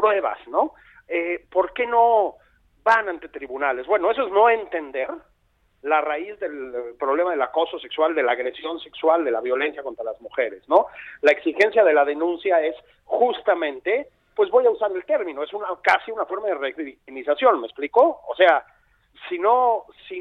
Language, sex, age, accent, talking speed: Spanish, male, 40-59, Mexican, 175 wpm